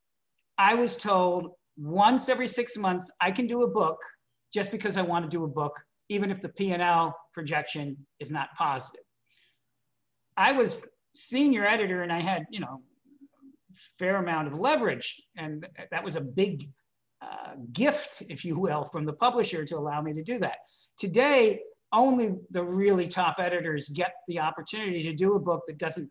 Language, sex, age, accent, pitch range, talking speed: English, male, 50-69, American, 165-215 Hz, 170 wpm